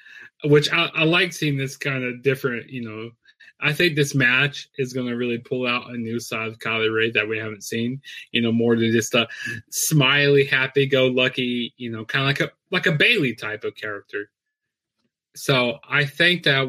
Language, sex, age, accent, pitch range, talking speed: English, male, 20-39, American, 115-150 Hz, 200 wpm